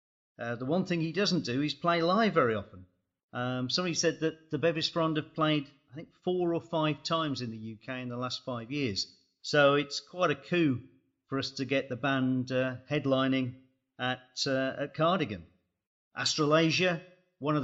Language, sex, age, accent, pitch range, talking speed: English, male, 40-59, British, 120-150 Hz, 185 wpm